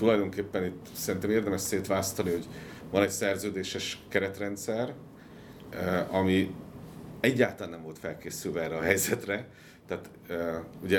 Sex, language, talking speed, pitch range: male, Hungarian, 110 wpm, 85-105 Hz